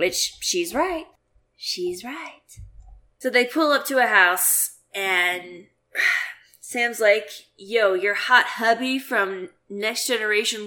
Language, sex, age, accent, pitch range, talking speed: English, female, 20-39, American, 205-290 Hz, 125 wpm